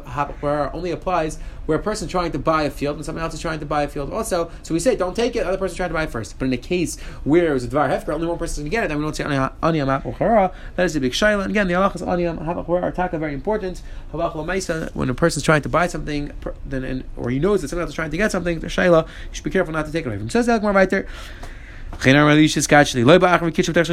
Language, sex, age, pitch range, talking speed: English, male, 30-49, 140-185 Hz, 275 wpm